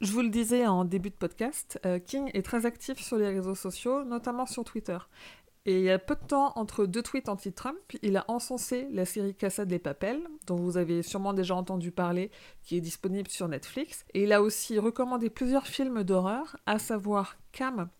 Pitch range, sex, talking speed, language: 190-235 Hz, female, 205 wpm, French